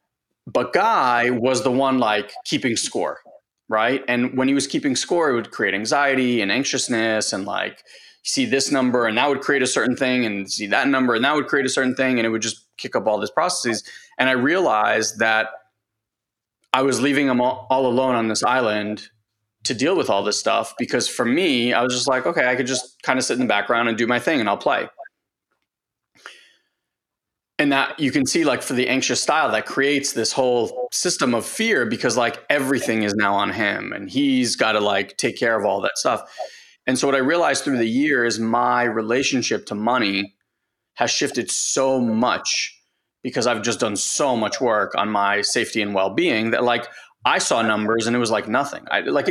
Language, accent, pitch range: English, American, 115-135 Hz